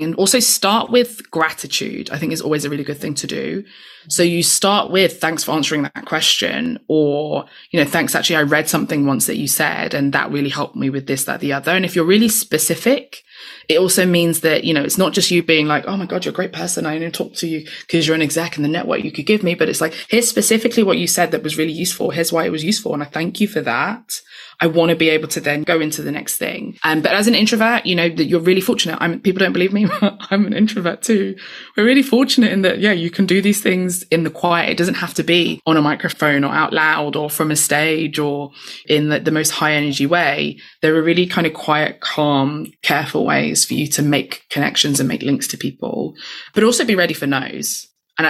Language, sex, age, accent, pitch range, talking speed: English, female, 20-39, British, 155-190 Hz, 255 wpm